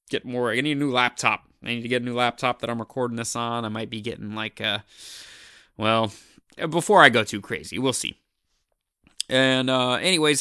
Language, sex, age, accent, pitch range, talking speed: English, male, 20-39, American, 115-145 Hz, 210 wpm